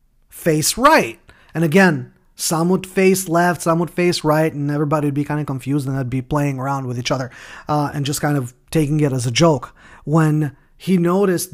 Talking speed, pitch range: 210 wpm, 135-160 Hz